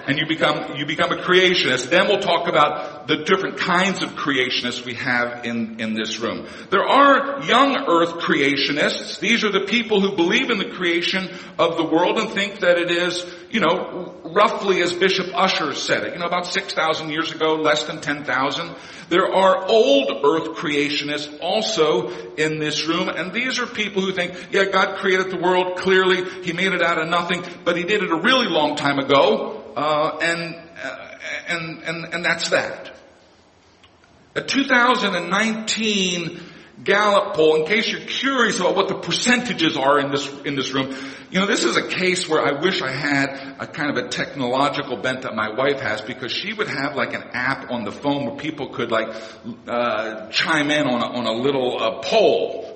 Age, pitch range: 50-69, 140-190 Hz